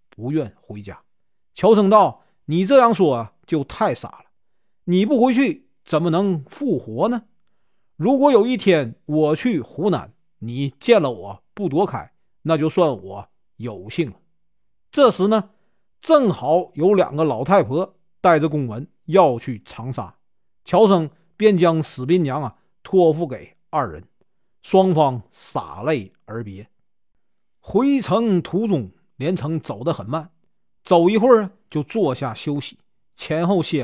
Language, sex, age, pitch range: Chinese, male, 50-69, 135-195 Hz